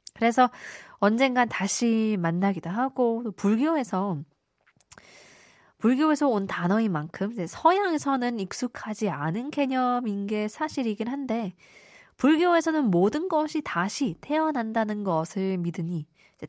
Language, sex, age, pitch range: Korean, female, 20-39, 175-250 Hz